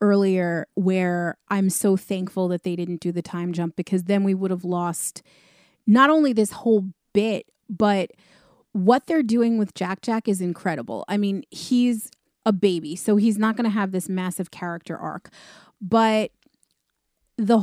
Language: English